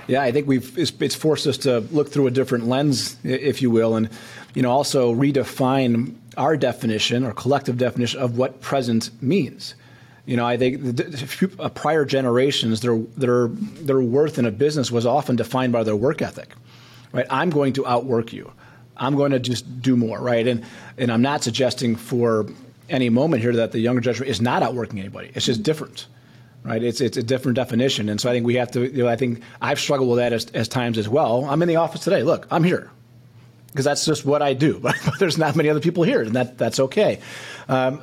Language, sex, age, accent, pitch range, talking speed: English, male, 30-49, American, 120-140 Hz, 215 wpm